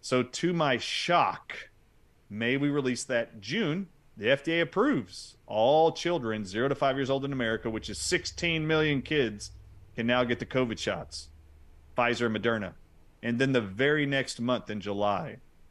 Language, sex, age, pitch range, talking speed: English, male, 30-49, 105-135 Hz, 160 wpm